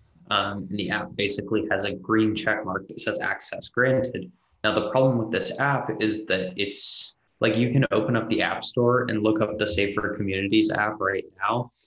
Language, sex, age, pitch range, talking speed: English, male, 20-39, 95-110 Hz, 195 wpm